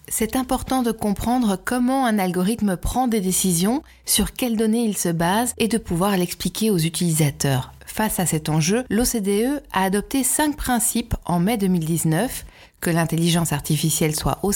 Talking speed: 160 wpm